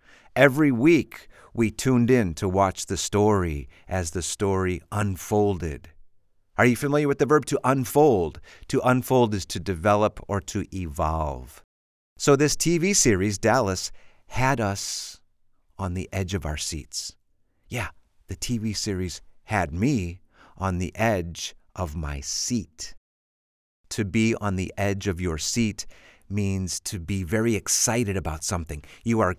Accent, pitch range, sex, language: American, 85-115 Hz, male, English